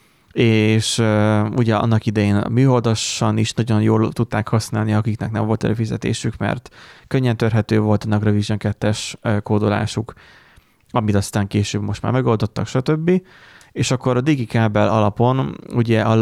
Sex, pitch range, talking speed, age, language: male, 105-120 Hz, 135 wpm, 30-49, Hungarian